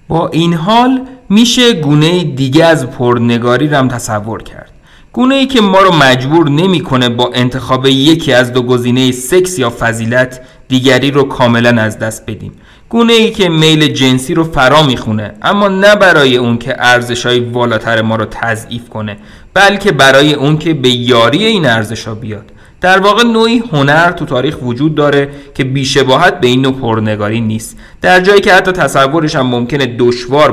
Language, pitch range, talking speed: Persian, 120-160 Hz, 165 wpm